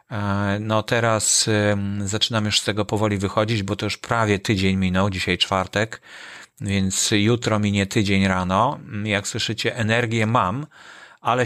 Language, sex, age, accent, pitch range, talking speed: Polish, male, 30-49, native, 100-125 Hz, 135 wpm